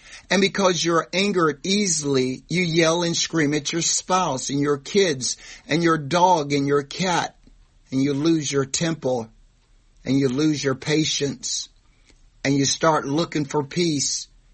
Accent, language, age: American, English, 60-79